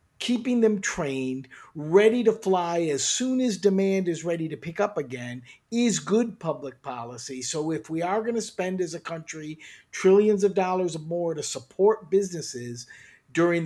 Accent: American